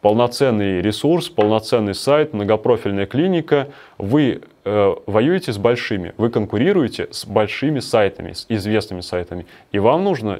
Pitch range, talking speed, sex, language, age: 100-125 Hz, 125 wpm, male, Russian, 20-39